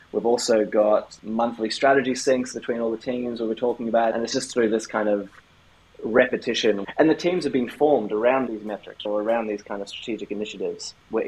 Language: English